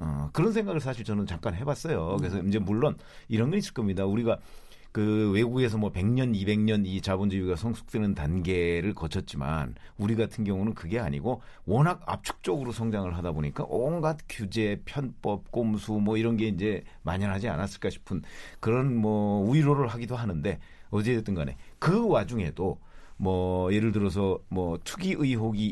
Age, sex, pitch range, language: 40-59, male, 90-125 Hz, Korean